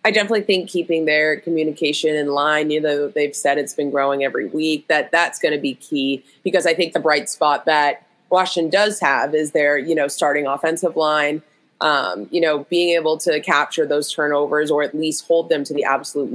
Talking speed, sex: 210 wpm, female